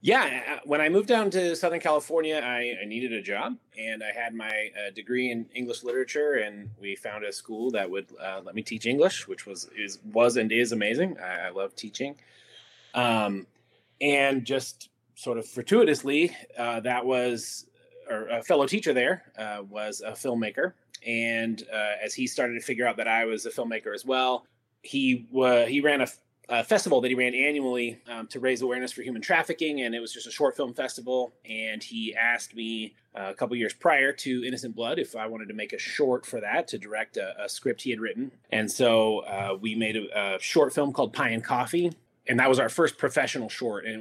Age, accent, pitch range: 20-39, American, 115-145 Hz